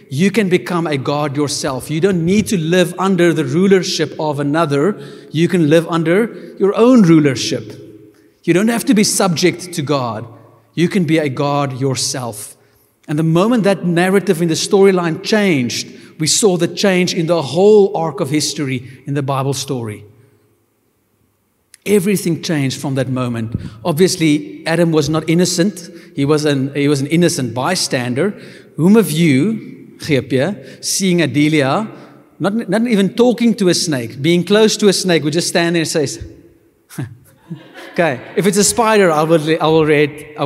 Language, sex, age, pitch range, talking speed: English, male, 50-69, 135-185 Hz, 165 wpm